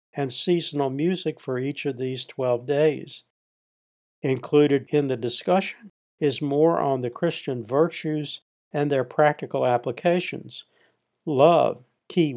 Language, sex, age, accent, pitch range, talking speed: English, male, 60-79, American, 130-170 Hz, 120 wpm